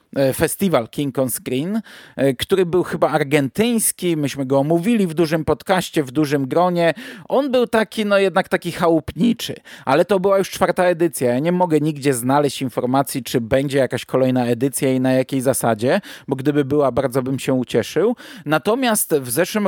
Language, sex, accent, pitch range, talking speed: Polish, male, native, 135-175 Hz, 170 wpm